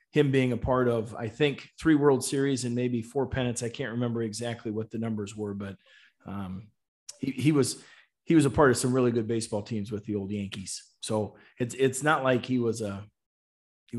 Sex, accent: male, American